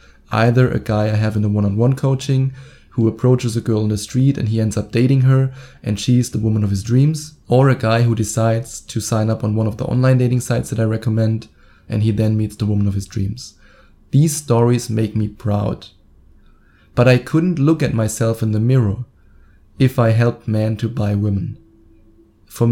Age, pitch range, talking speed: 20-39, 105-125 Hz, 205 wpm